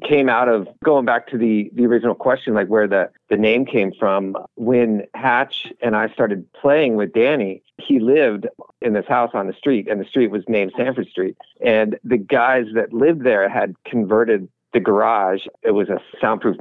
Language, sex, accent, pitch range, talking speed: English, male, American, 105-125 Hz, 195 wpm